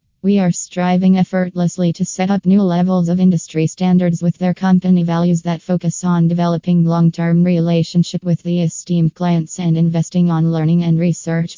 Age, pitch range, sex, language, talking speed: 20-39, 160-175 Hz, female, English, 165 wpm